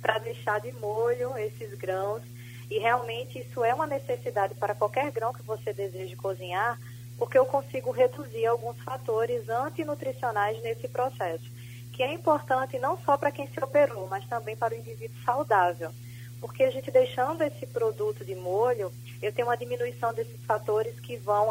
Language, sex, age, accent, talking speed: Portuguese, female, 20-39, Brazilian, 165 wpm